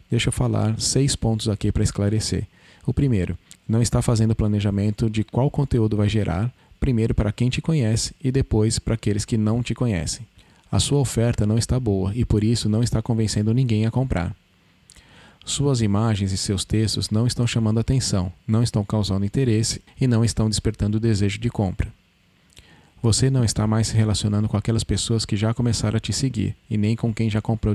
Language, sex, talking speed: Portuguese, male, 190 wpm